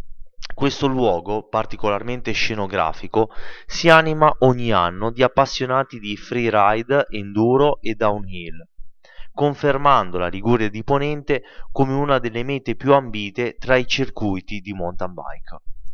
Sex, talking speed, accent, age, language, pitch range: male, 120 wpm, native, 20-39, Italian, 100-135 Hz